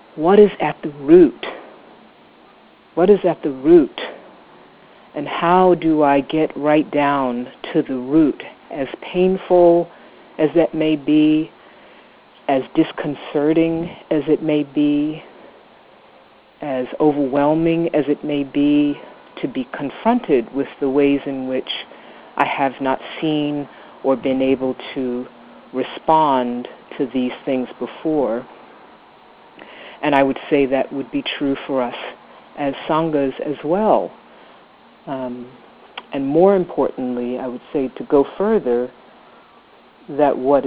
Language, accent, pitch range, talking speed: English, American, 135-165 Hz, 125 wpm